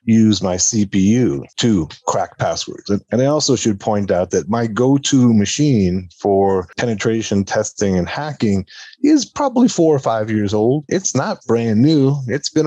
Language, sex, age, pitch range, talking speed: English, male, 40-59, 95-130 Hz, 165 wpm